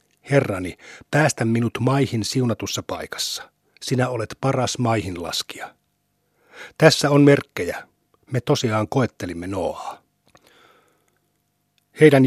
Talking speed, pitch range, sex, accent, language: 95 wpm, 115-140 Hz, male, native, Finnish